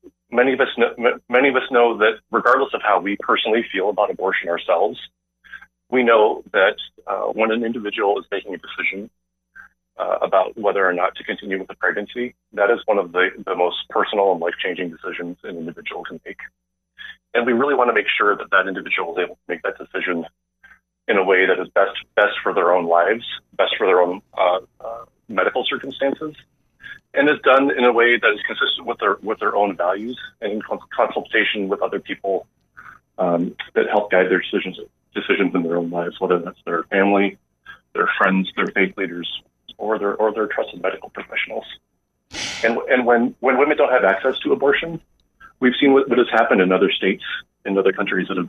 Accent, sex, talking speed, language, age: American, male, 195 wpm, English, 40-59